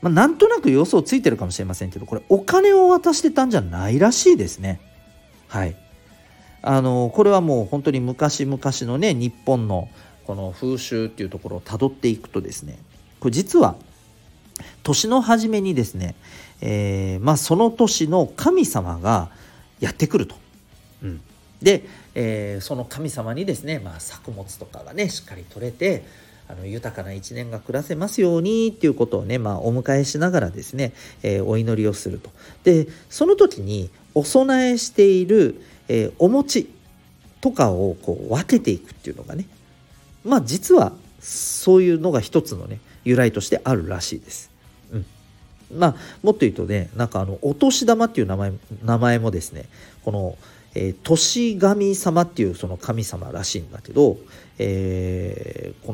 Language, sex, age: Japanese, male, 40-59